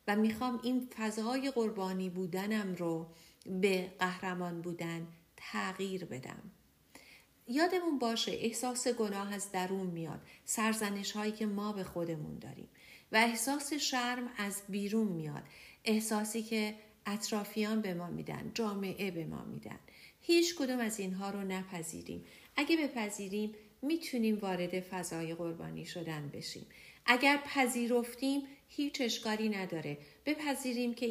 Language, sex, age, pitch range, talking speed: English, female, 50-69, 185-240 Hz, 120 wpm